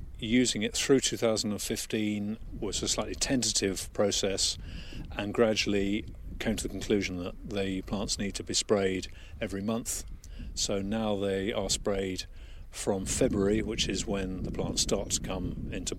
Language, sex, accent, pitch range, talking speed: English, male, British, 90-110 Hz, 150 wpm